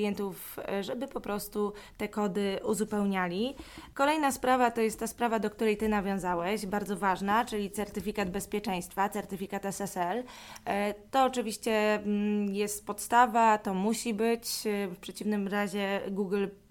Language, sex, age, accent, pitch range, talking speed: Polish, female, 20-39, native, 200-225 Hz, 120 wpm